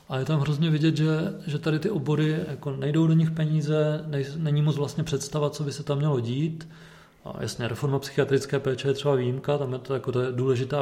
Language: Czech